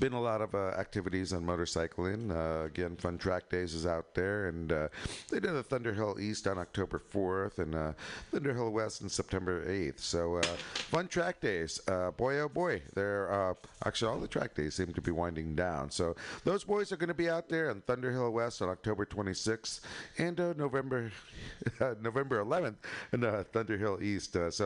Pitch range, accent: 85-115 Hz, American